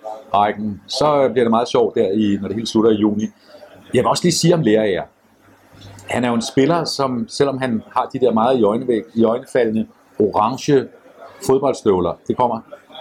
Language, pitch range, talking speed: Danish, 115-140 Hz, 180 wpm